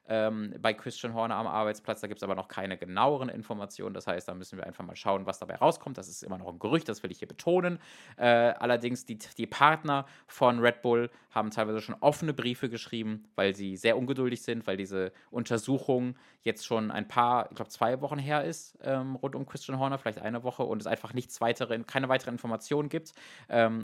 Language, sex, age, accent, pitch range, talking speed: English, male, 20-39, German, 105-140 Hz, 215 wpm